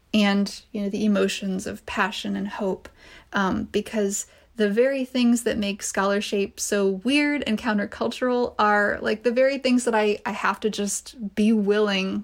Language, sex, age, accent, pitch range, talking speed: English, female, 20-39, American, 195-225 Hz, 165 wpm